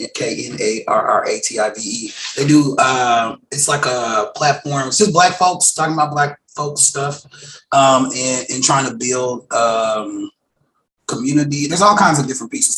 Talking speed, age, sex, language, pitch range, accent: 145 wpm, 30-49, male, English, 125-155 Hz, American